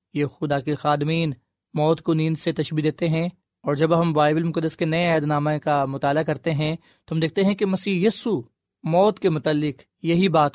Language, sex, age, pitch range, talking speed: Urdu, male, 20-39, 145-175 Hz, 205 wpm